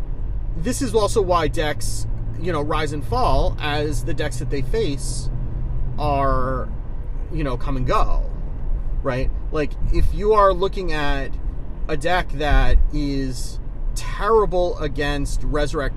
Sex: male